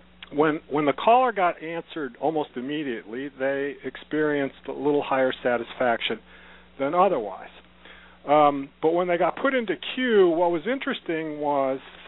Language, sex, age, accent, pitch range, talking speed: English, male, 50-69, American, 140-205 Hz, 140 wpm